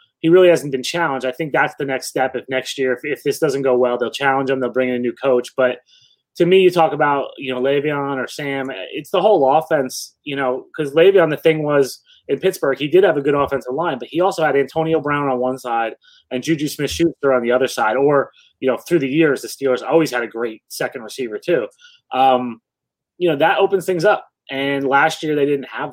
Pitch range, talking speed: 130-160 Hz, 240 wpm